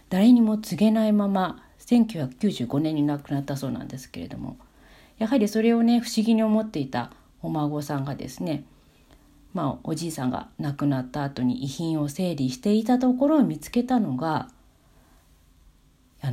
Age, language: 40-59, Japanese